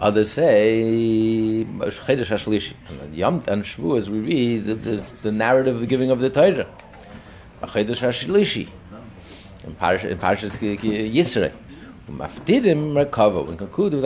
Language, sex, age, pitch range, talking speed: English, male, 60-79, 105-125 Hz, 85 wpm